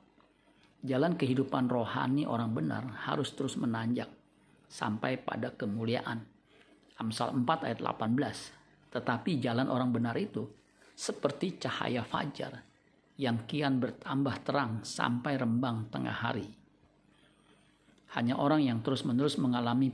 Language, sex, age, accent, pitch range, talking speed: Indonesian, male, 50-69, native, 115-135 Hz, 110 wpm